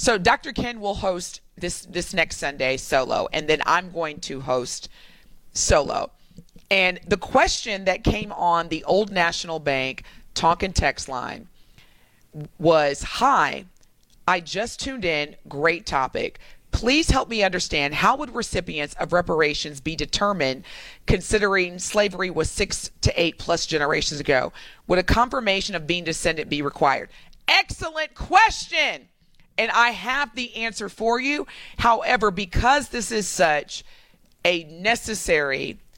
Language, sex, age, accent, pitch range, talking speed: English, female, 40-59, American, 155-220 Hz, 135 wpm